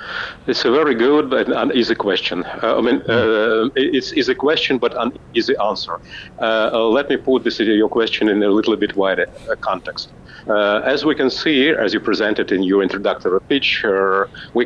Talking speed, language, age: 190 wpm, English, 50-69